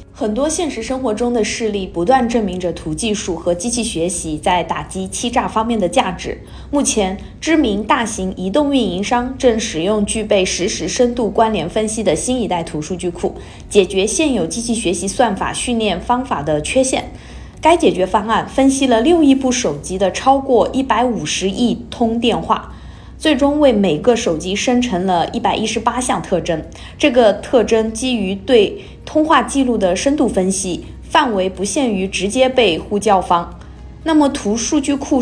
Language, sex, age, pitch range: Chinese, female, 20-39, 190-260 Hz